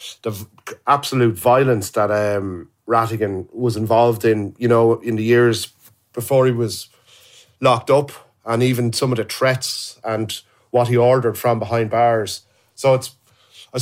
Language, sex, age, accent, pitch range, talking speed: English, male, 30-49, Irish, 110-125 Hz, 155 wpm